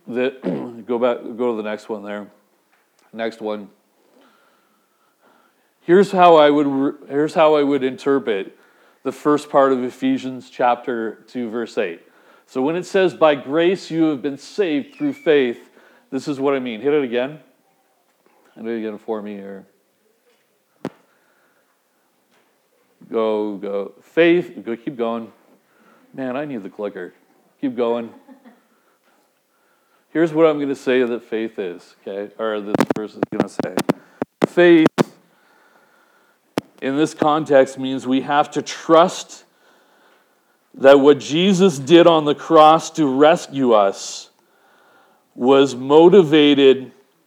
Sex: male